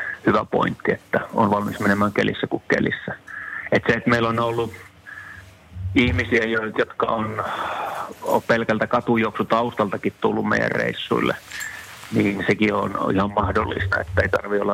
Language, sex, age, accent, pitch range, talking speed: Finnish, male, 30-49, native, 100-110 Hz, 135 wpm